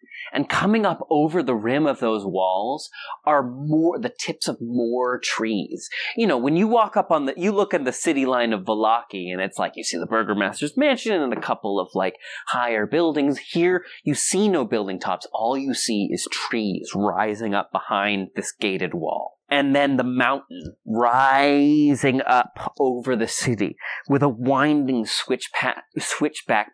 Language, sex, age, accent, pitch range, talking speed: English, male, 30-49, American, 110-170 Hz, 175 wpm